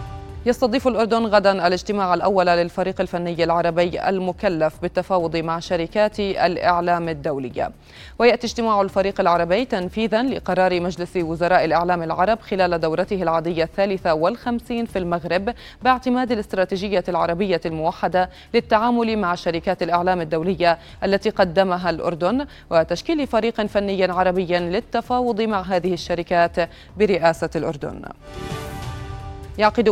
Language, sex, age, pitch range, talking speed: Arabic, female, 20-39, 170-200 Hz, 110 wpm